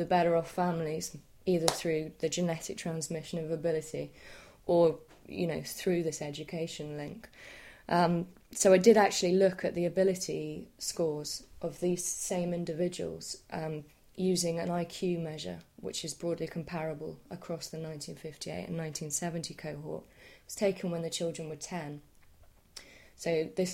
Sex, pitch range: female, 155-180 Hz